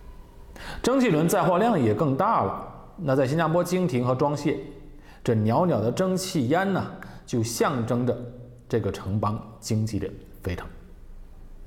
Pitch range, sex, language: 95-125 Hz, male, Chinese